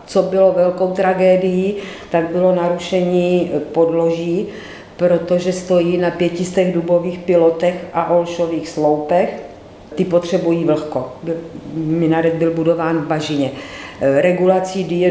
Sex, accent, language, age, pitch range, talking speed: female, native, Czech, 50-69, 165-185 Hz, 105 wpm